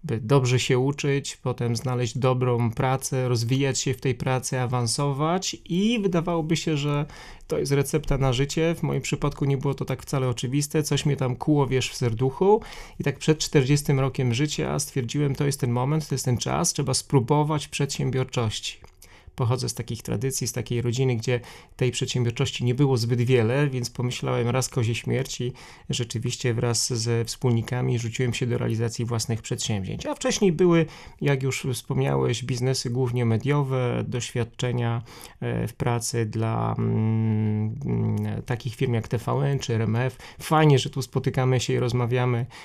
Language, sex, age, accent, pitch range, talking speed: Polish, male, 30-49, native, 120-140 Hz, 160 wpm